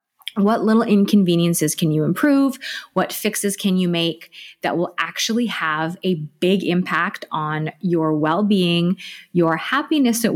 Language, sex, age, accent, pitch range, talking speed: English, female, 30-49, American, 175-235 Hz, 145 wpm